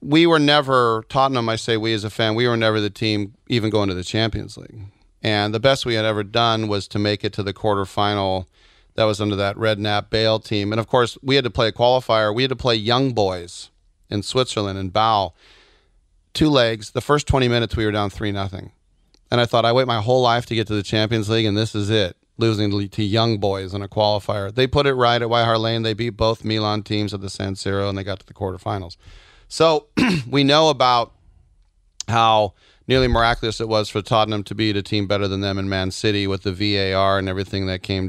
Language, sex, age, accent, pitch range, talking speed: English, male, 40-59, American, 100-115 Hz, 230 wpm